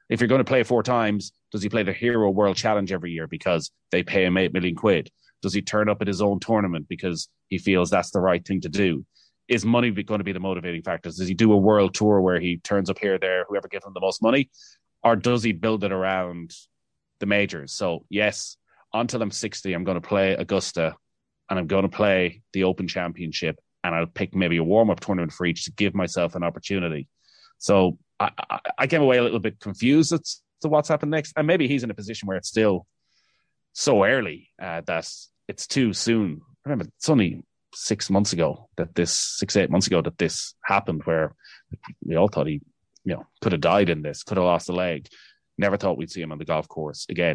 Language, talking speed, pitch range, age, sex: English, 230 wpm, 90-110 Hz, 30-49, male